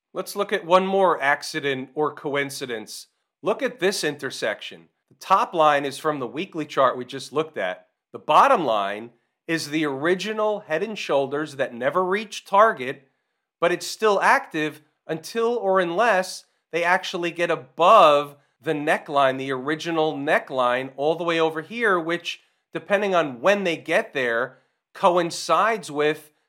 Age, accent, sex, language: 40-59, American, male, English